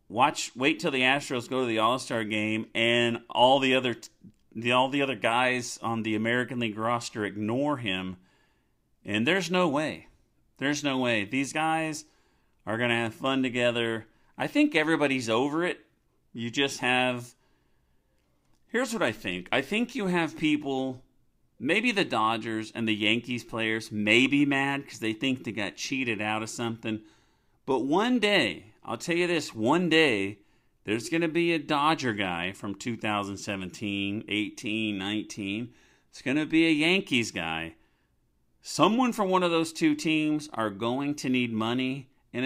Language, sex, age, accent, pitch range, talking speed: English, male, 40-59, American, 110-145 Hz, 165 wpm